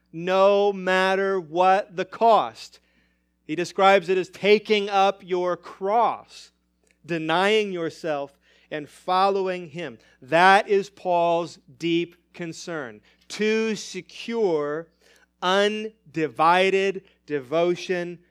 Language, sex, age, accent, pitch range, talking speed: English, male, 40-59, American, 130-185 Hz, 90 wpm